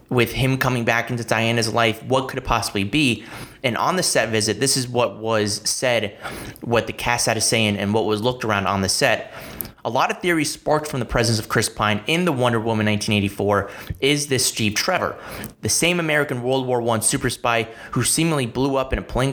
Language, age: English, 30-49